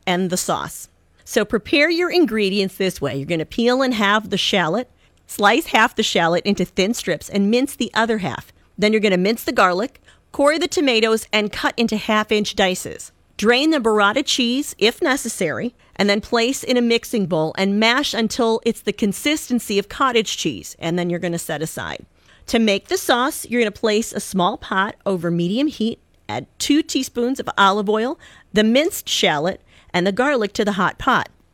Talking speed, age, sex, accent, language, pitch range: 195 wpm, 40-59, female, American, English, 200-270 Hz